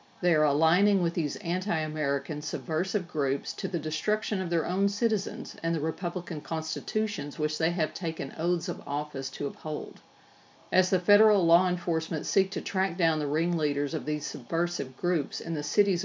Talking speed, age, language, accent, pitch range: 170 wpm, 50-69, English, American, 155-195 Hz